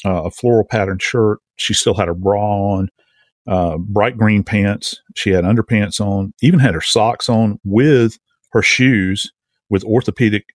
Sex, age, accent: male, 40-59, American